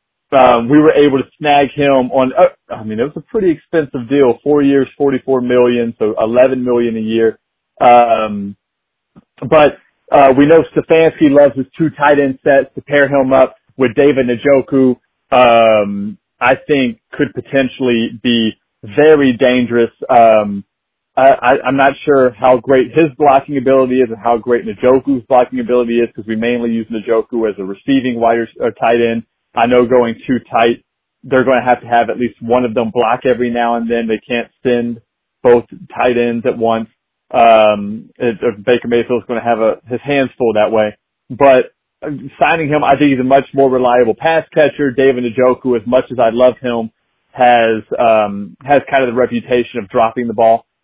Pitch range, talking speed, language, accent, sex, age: 115-135 Hz, 190 wpm, English, American, male, 30-49